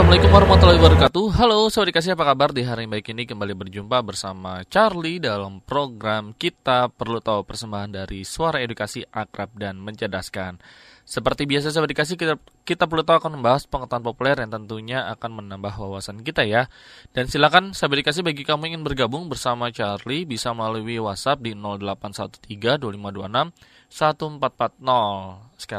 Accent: native